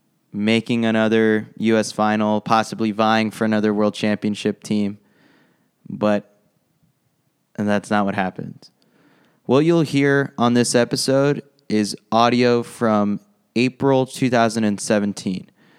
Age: 20-39